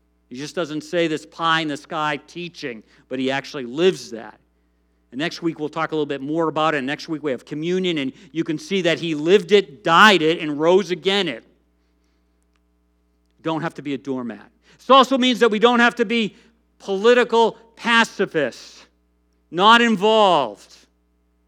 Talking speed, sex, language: 175 wpm, male, English